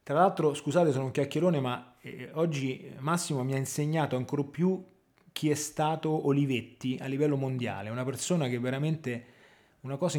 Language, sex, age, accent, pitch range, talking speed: Italian, male, 20-39, native, 125-155 Hz, 170 wpm